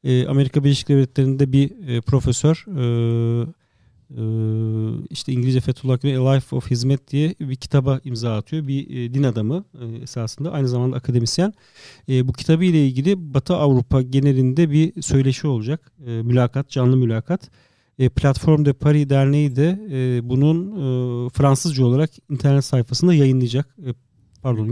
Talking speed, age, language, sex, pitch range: 120 wpm, 40-59, Turkish, male, 125-150 Hz